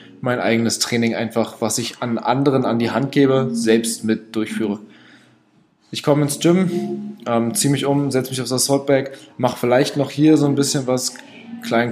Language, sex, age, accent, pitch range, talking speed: German, male, 20-39, German, 115-135 Hz, 180 wpm